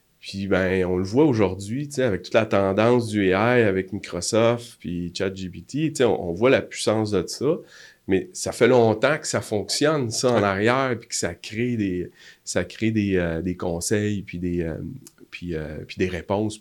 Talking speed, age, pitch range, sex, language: 155 wpm, 30-49, 90-115 Hz, male, French